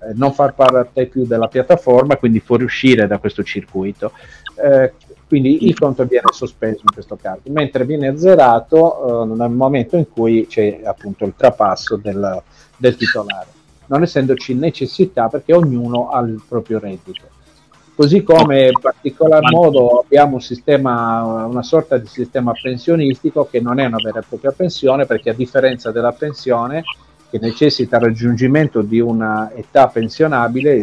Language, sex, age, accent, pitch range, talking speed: Italian, male, 50-69, native, 115-145 Hz, 150 wpm